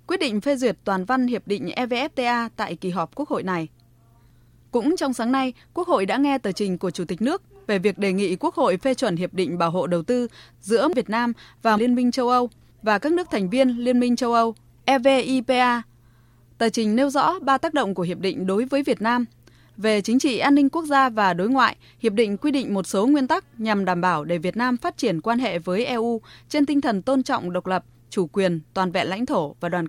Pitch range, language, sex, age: 185-260 Hz, Vietnamese, female, 20-39